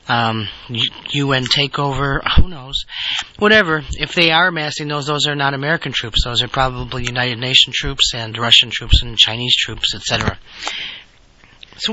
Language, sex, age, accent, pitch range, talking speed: English, male, 40-59, American, 135-180 Hz, 155 wpm